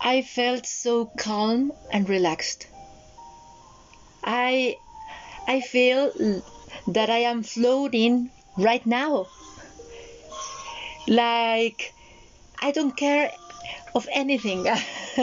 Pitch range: 215-265 Hz